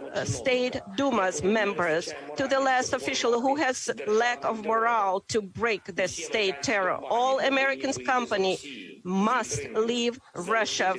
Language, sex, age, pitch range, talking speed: English, female, 40-59, 205-245 Hz, 125 wpm